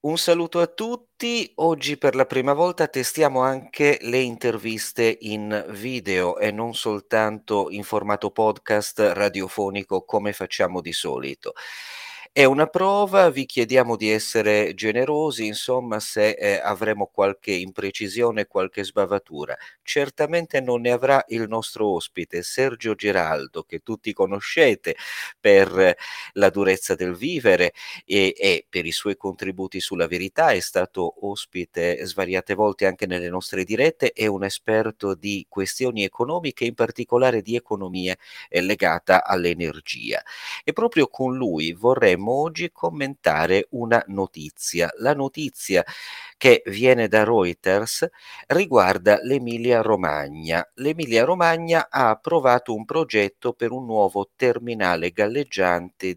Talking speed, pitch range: 125 wpm, 100-135 Hz